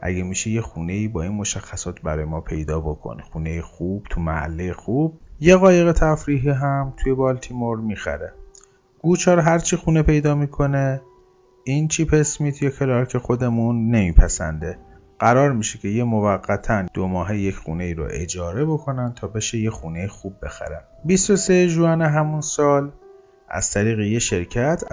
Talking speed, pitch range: 155 wpm, 90-140 Hz